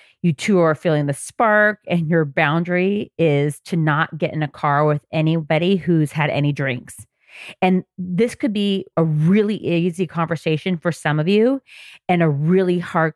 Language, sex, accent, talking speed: English, female, American, 175 wpm